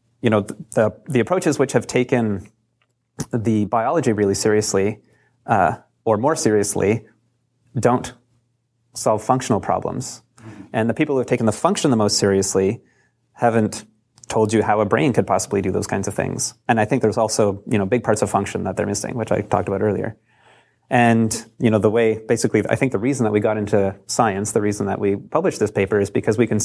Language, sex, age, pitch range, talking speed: English, male, 30-49, 105-120 Hz, 200 wpm